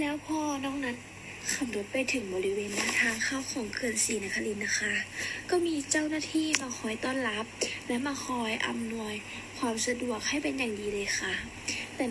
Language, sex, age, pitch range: Thai, female, 20-39, 215-285 Hz